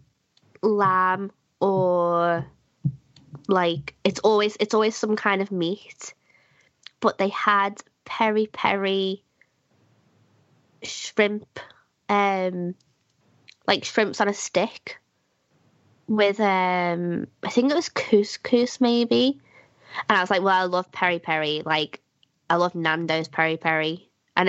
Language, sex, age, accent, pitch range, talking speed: English, female, 20-39, British, 160-195 Hz, 115 wpm